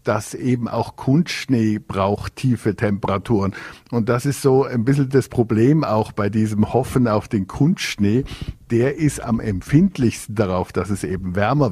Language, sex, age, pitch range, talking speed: German, male, 50-69, 100-120 Hz, 160 wpm